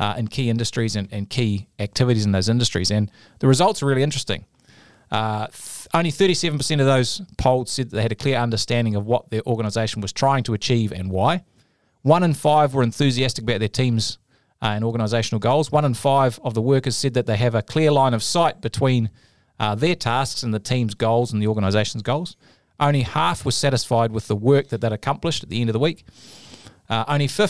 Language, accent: English, Australian